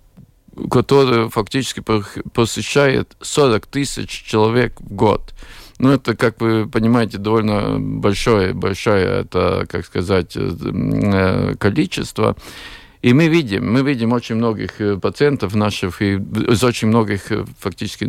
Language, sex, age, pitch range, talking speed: Russian, male, 50-69, 105-135 Hz, 110 wpm